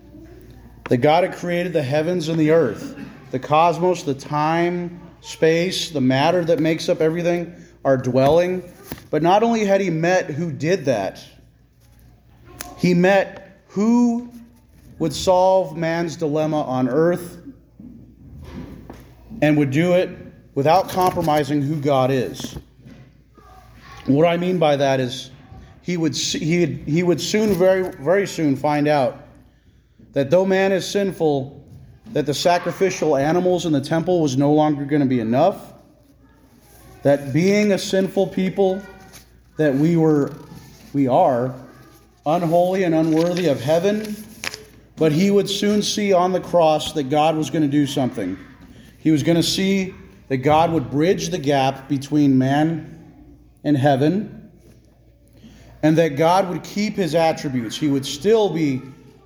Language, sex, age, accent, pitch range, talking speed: English, male, 30-49, American, 140-180 Hz, 145 wpm